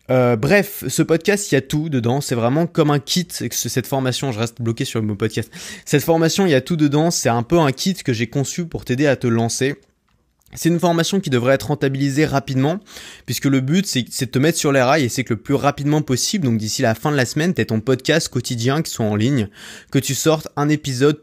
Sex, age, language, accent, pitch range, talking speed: male, 20-39, French, French, 125-155 Hz, 250 wpm